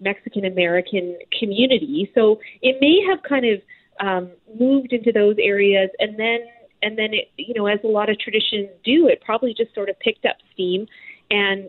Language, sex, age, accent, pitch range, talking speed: English, female, 30-49, American, 180-230 Hz, 185 wpm